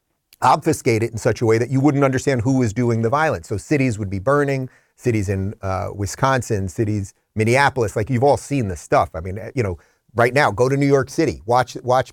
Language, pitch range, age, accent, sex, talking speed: English, 115-155 Hz, 30-49, American, male, 225 wpm